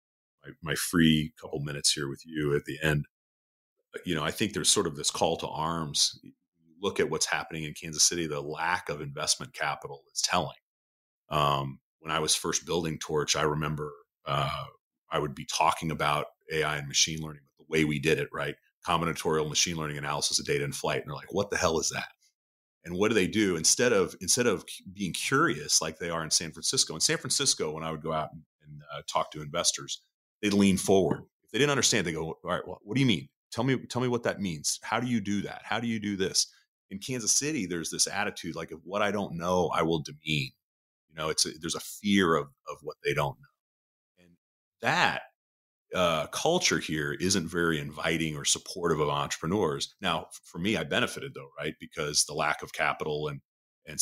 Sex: male